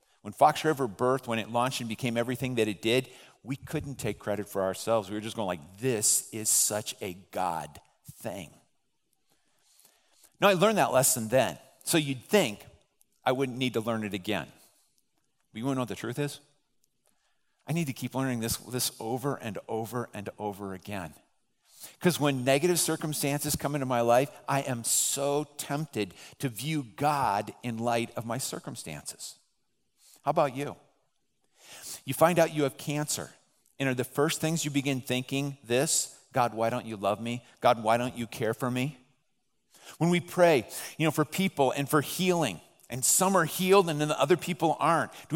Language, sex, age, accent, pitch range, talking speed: English, male, 50-69, American, 120-155 Hz, 185 wpm